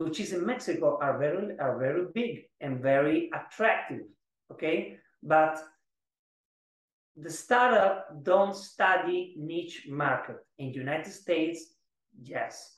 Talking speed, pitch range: 115 wpm, 150-195 Hz